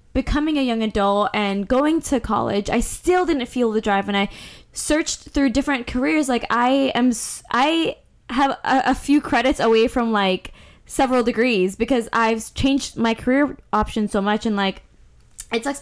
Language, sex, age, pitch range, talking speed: English, female, 10-29, 205-250 Hz, 175 wpm